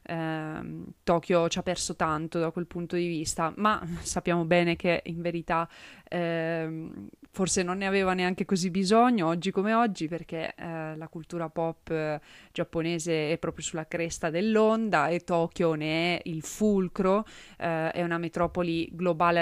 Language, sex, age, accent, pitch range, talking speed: Italian, female, 20-39, native, 165-185 Hz, 150 wpm